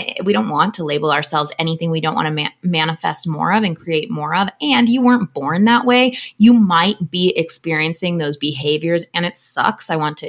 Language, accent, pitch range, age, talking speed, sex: English, American, 160-210 Hz, 20-39, 210 wpm, female